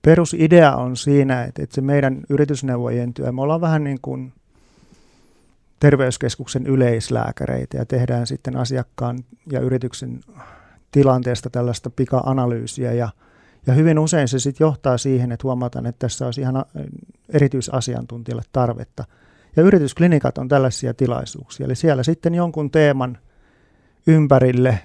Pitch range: 125-145 Hz